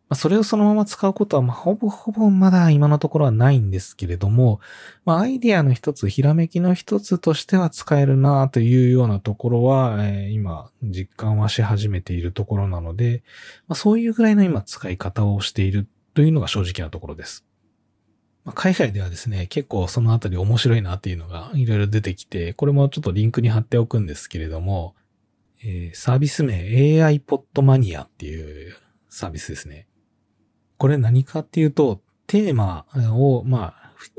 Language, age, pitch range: Japanese, 20-39, 100-150 Hz